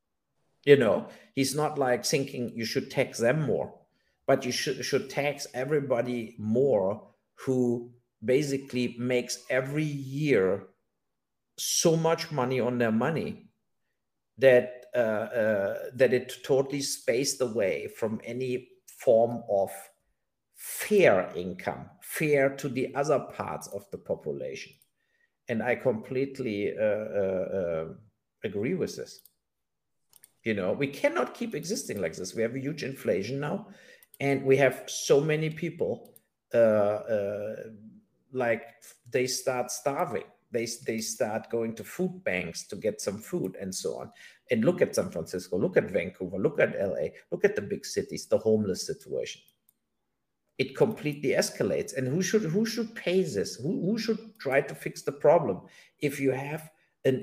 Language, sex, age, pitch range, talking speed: English, male, 50-69, 125-170 Hz, 145 wpm